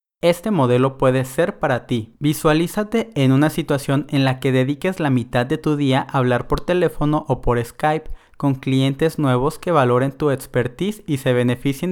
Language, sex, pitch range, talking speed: Spanish, male, 125-155 Hz, 180 wpm